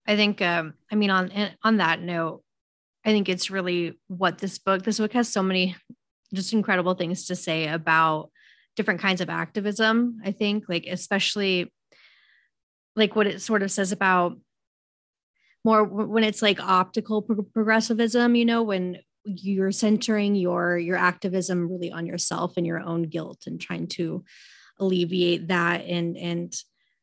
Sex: female